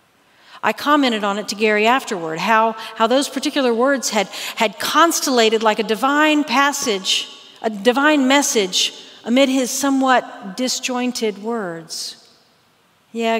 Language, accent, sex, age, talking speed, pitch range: English, American, female, 50-69, 125 wpm, 215-250 Hz